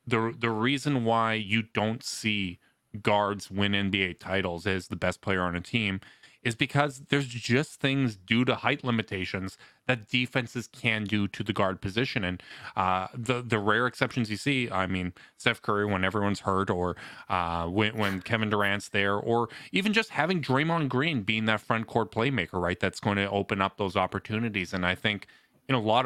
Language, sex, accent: English, male, American